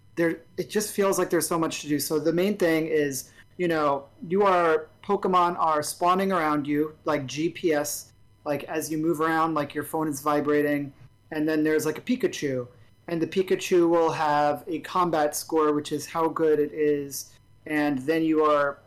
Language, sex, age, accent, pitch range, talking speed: English, male, 30-49, American, 145-170 Hz, 190 wpm